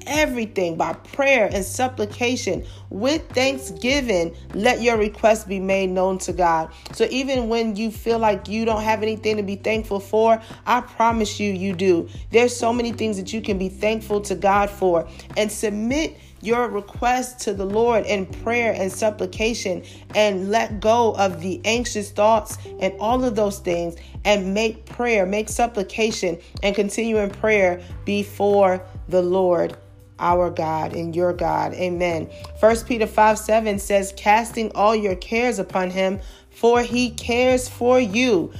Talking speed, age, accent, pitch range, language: 160 wpm, 40-59, American, 190-230 Hz, English